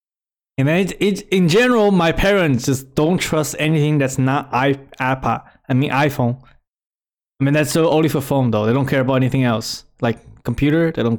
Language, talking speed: English, 190 wpm